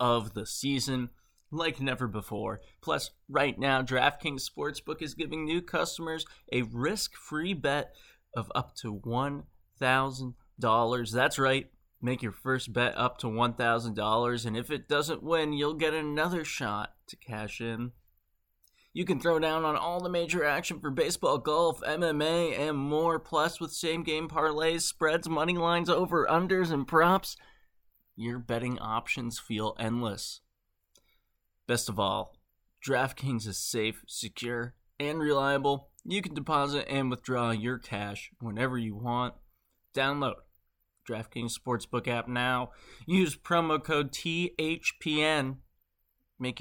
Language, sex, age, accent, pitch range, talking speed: English, male, 20-39, American, 115-155 Hz, 135 wpm